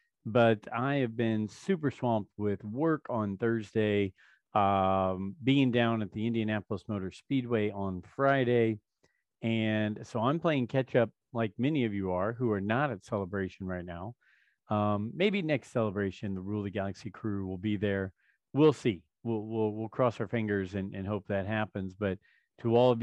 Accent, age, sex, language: American, 40-59, male, English